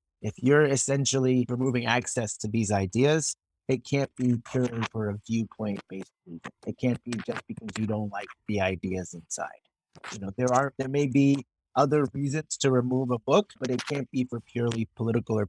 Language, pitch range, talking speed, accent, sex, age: English, 110-135 Hz, 185 wpm, American, male, 30-49